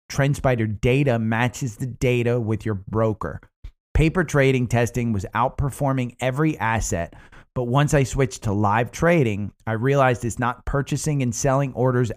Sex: male